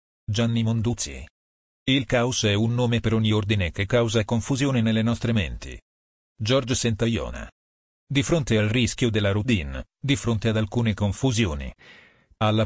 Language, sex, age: Italian, male, 40-59